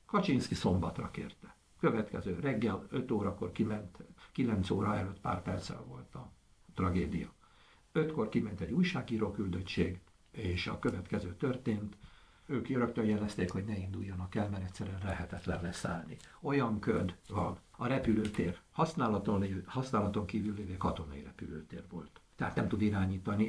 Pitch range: 90-110 Hz